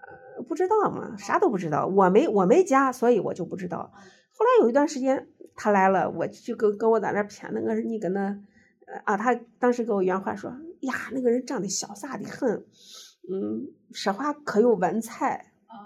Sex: female